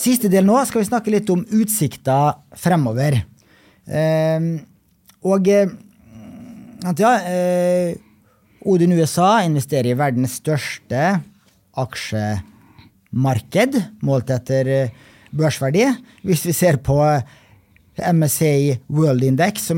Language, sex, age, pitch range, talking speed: English, male, 30-49, 130-180 Hz, 90 wpm